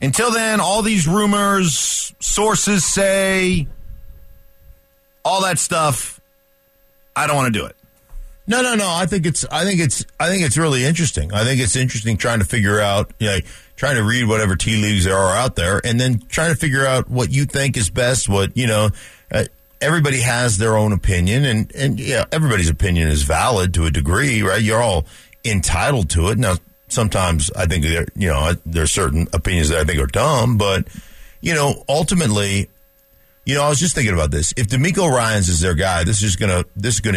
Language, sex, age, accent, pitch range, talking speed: English, male, 50-69, American, 90-130 Hz, 195 wpm